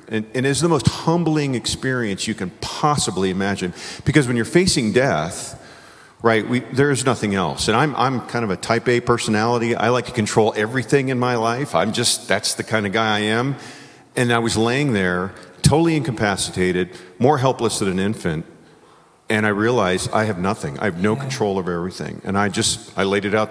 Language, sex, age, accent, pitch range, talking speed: English, male, 40-59, American, 95-125 Hz, 195 wpm